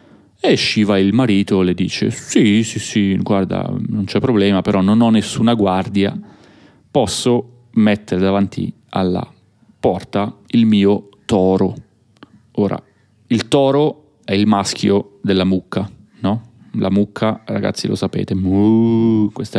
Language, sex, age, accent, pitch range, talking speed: Italian, male, 30-49, native, 95-120 Hz, 130 wpm